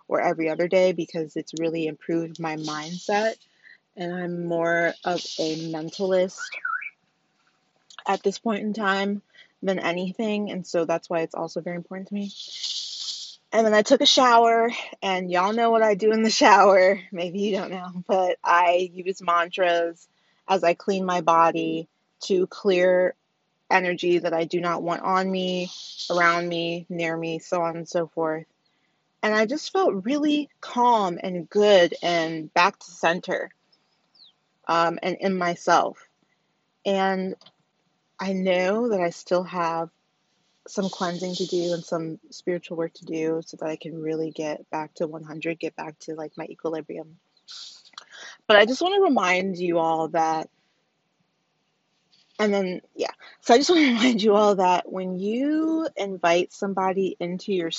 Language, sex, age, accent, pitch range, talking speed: English, female, 20-39, American, 165-200 Hz, 160 wpm